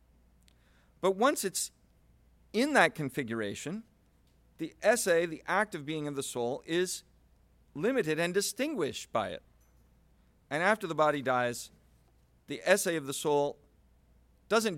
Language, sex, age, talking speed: English, male, 40-59, 130 wpm